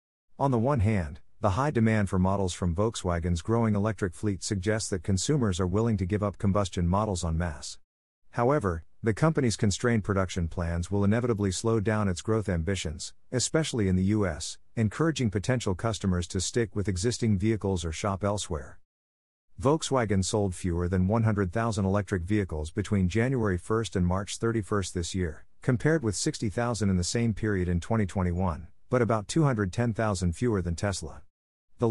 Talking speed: 160 wpm